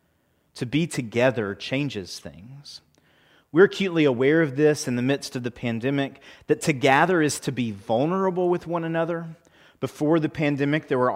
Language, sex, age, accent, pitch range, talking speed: English, male, 30-49, American, 120-145 Hz, 165 wpm